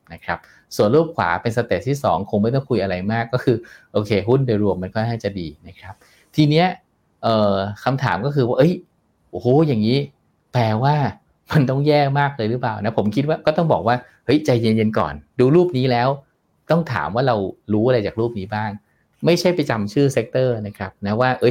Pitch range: 105-140 Hz